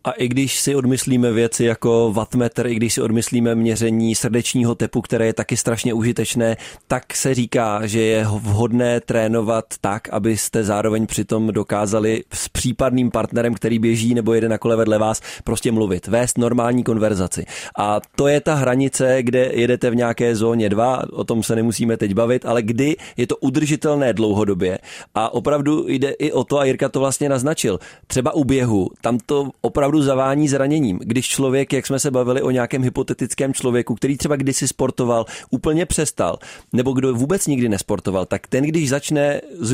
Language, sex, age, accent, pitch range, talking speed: Czech, male, 20-39, native, 115-140 Hz, 175 wpm